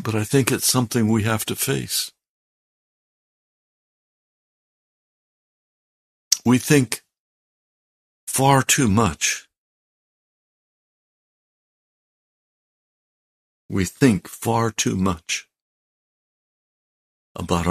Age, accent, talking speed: 60-79, American, 70 wpm